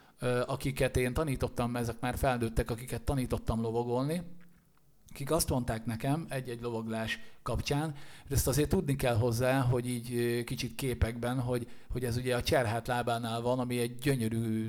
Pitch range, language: 115-135 Hz, Hungarian